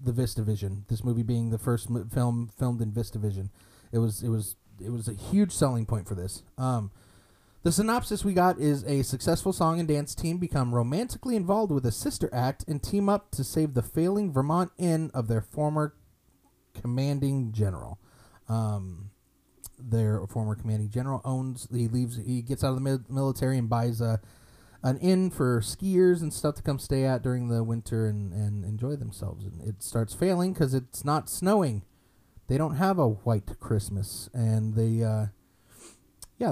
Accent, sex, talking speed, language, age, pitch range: American, male, 180 wpm, English, 30-49, 110-150 Hz